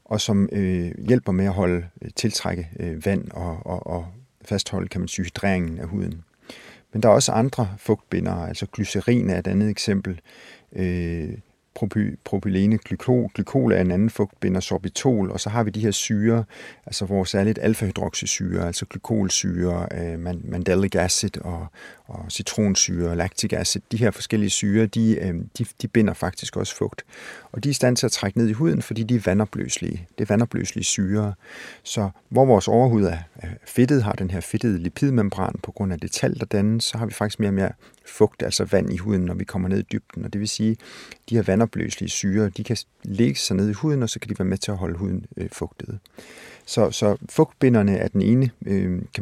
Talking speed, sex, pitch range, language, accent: 200 wpm, male, 95-110 Hz, Danish, native